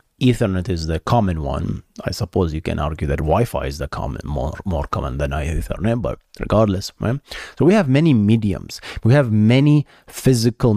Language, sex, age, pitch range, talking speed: English, male, 30-49, 90-120 Hz, 180 wpm